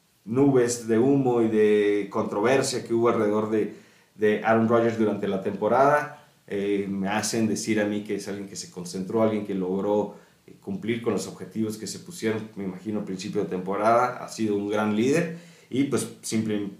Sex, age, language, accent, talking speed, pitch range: male, 30-49, Spanish, Mexican, 185 wpm, 100-135 Hz